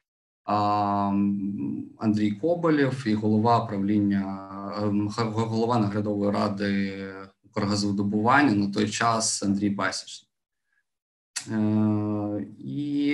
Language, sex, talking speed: Ukrainian, male, 70 wpm